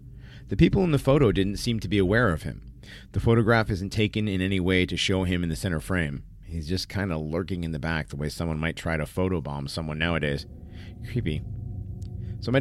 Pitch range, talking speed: 90-110 Hz, 220 wpm